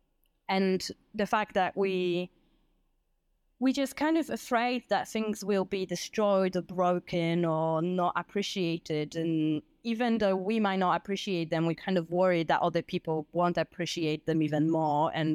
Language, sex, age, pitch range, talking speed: English, female, 20-39, 160-190 Hz, 160 wpm